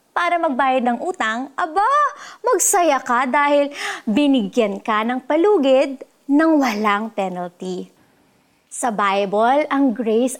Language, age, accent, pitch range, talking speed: Filipino, 20-39, native, 225-330 Hz, 110 wpm